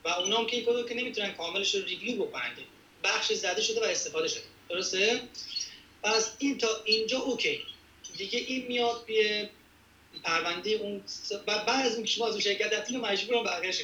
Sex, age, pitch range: male, 40-59, 185-240 Hz